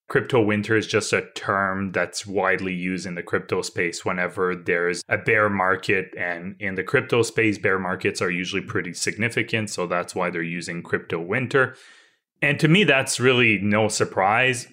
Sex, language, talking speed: male, English, 180 wpm